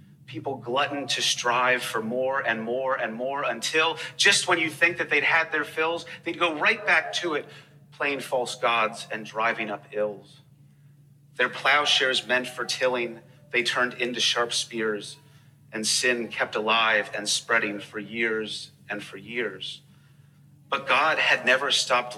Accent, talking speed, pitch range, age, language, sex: American, 160 wpm, 125-150 Hz, 30-49, English, male